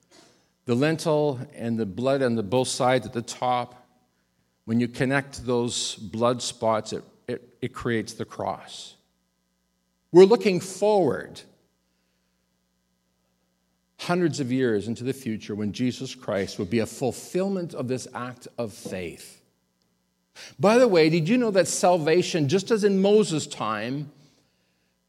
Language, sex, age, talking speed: English, male, 50-69, 135 wpm